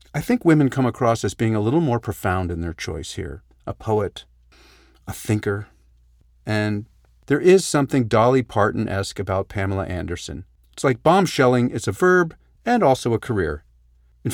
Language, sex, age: English, male, 40-59